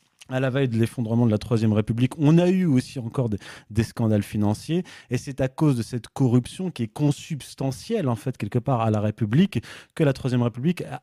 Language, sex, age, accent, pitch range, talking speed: French, male, 30-49, French, 120-155 Hz, 220 wpm